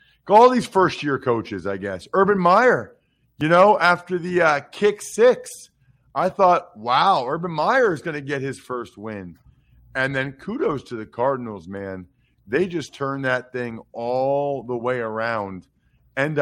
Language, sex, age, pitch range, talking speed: English, male, 40-59, 110-145 Hz, 160 wpm